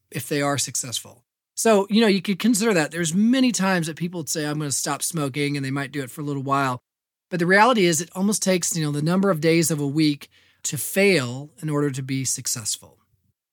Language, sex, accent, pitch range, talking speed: English, male, American, 140-195 Hz, 240 wpm